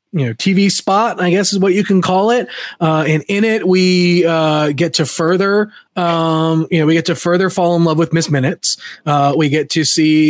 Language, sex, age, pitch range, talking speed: English, male, 30-49, 140-190 Hz, 225 wpm